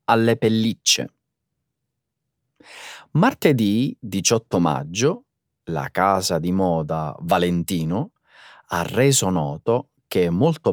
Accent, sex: native, male